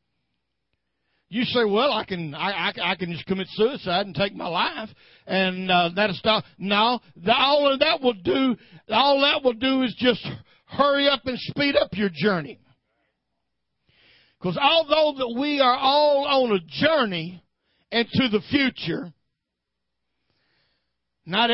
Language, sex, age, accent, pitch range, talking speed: English, male, 60-79, American, 175-265 Hz, 145 wpm